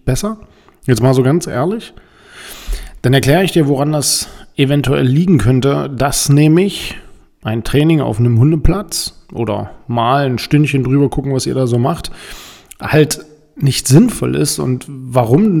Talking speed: 150 wpm